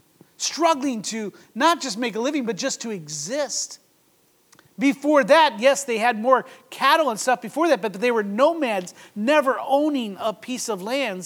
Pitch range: 190-265 Hz